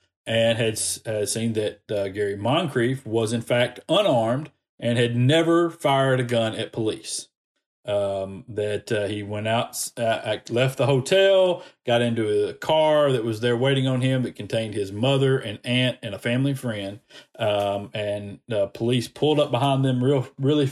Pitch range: 110-130 Hz